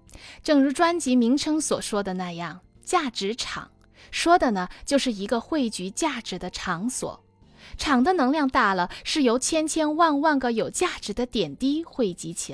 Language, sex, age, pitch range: Chinese, female, 20-39, 195-290 Hz